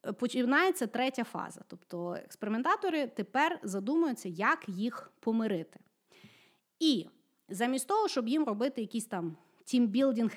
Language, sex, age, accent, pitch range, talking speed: Ukrainian, female, 30-49, native, 205-270 Hz, 110 wpm